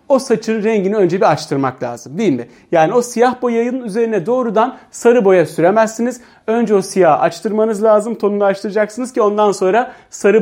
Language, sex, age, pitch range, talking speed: Turkish, male, 40-59, 180-240 Hz, 165 wpm